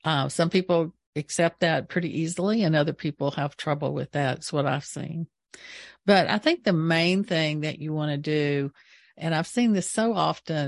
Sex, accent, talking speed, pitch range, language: female, American, 195 wpm, 150-185 Hz, English